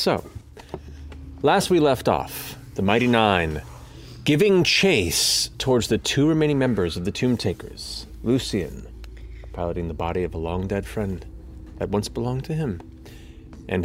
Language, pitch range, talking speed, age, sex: English, 90-130 Hz, 145 wpm, 30-49, male